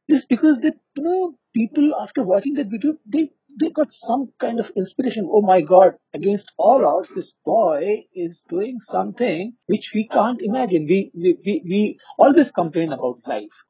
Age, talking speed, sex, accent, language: 50-69, 175 wpm, male, Indian, English